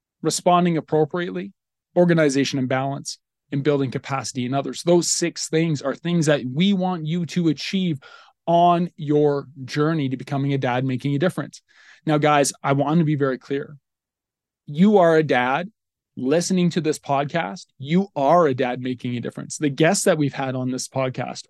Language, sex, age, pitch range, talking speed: English, male, 20-39, 140-175 Hz, 175 wpm